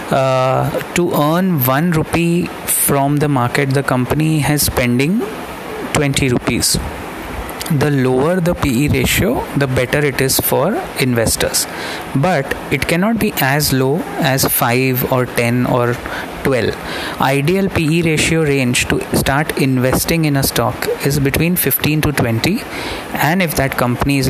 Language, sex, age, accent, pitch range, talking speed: English, male, 30-49, Indian, 130-165 Hz, 140 wpm